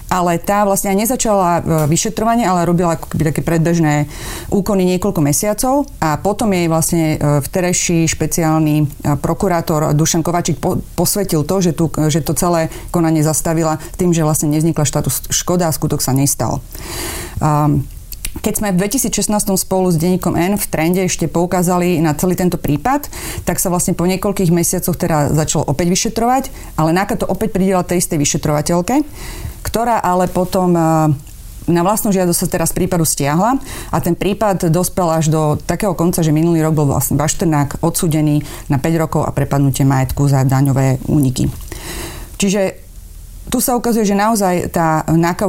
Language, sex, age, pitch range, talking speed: Slovak, female, 30-49, 155-195 Hz, 155 wpm